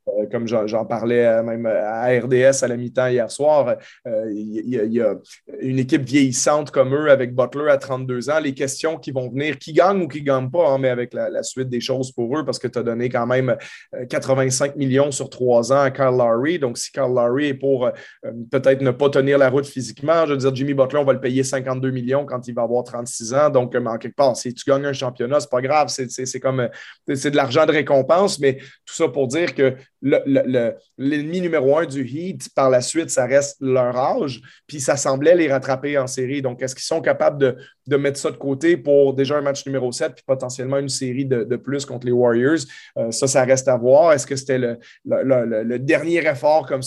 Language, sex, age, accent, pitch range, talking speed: French, male, 30-49, Canadian, 130-150 Hz, 235 wpm